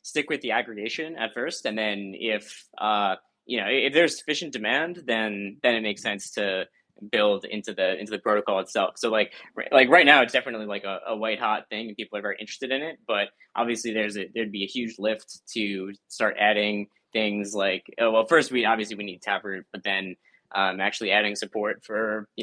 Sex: male